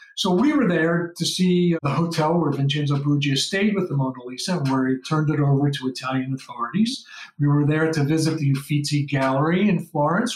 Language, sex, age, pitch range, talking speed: English, male, 50-69, 145-195 Hz, 195 wpm